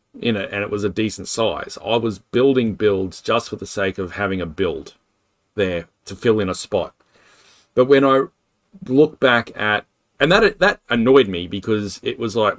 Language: English